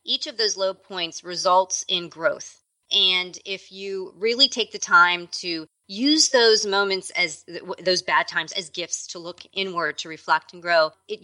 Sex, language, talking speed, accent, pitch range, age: female, English, 175 wpm, American, 165-205 Hz, 30-49